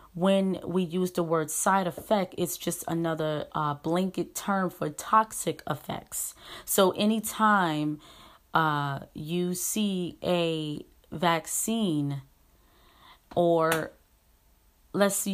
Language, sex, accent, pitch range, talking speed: English, female, American, 150-190 Hz, 100 wpm